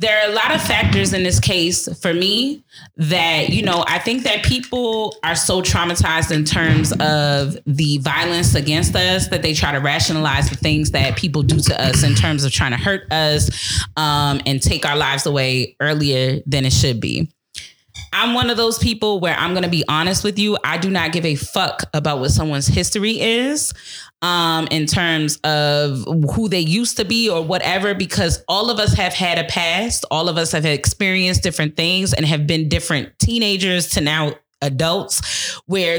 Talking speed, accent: 195 wpm, American